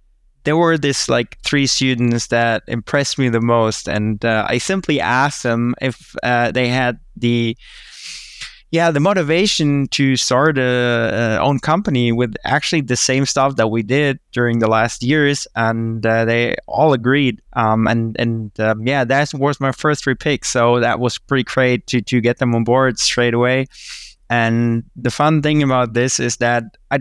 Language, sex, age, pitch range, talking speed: German, male, 20-39, 115-140 Hz, 180 wpm